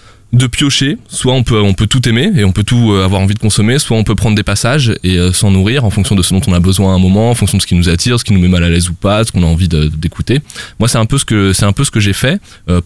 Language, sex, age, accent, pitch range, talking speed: French, male, 20-39, French, 90-115 Hz, 350 wpm